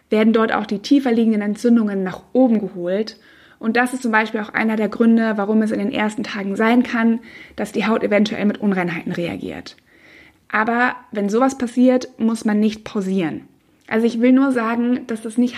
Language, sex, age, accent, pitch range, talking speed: German, female, 20-39, German, 200-230 Hz, 195 wpm